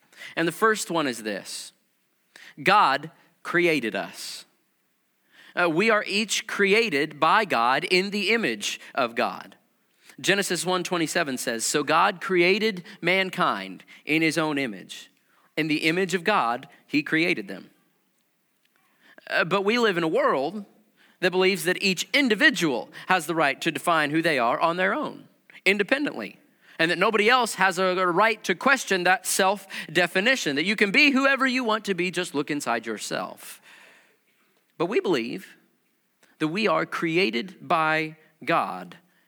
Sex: male